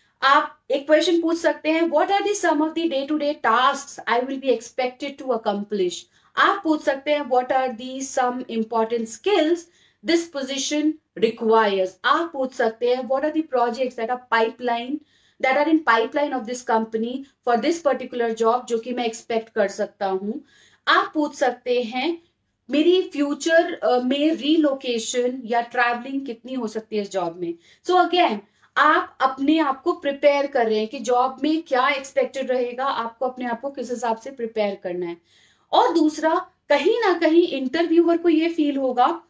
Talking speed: 140 wpm